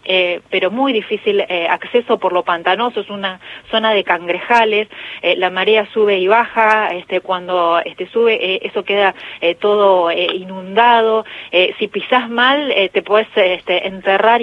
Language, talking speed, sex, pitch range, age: Spanish, 165 wpm, female, 180-220 Hz, 30-49